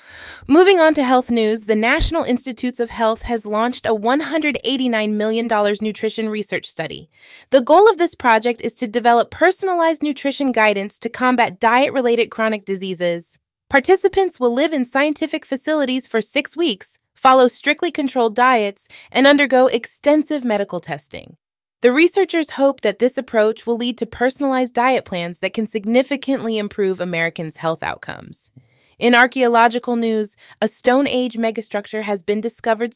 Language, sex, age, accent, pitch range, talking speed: English, female, 20-39, American, 215-280 Hz, 145 wpm